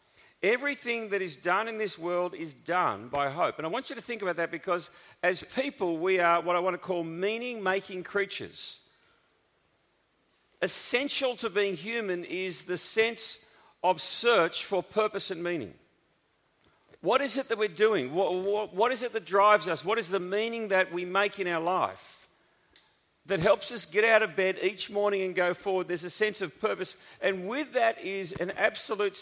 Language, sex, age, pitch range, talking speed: English, male, 40-59, 170-220 Hz, 185 wpm